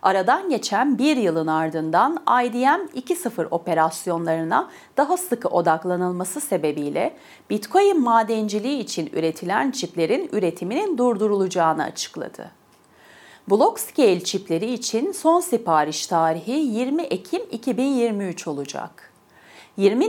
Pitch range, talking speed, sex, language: 165-275 Hz, 90 wpm, female, Turkish